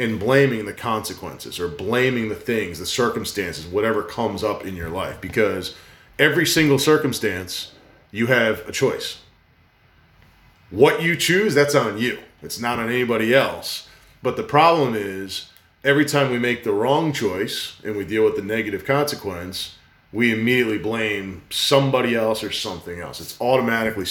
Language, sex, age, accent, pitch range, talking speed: English, male, 40-59, American, 110-135 Hz, 155 wpm